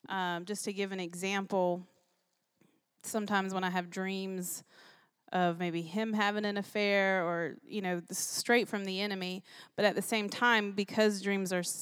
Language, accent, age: English, American, 20-39